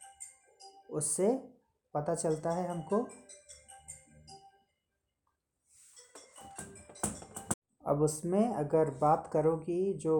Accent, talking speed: native, 70 wpm